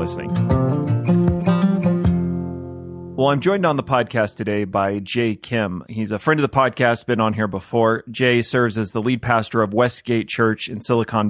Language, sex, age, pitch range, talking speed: English, male, 30-49, 105-125 Hz, 170 wpm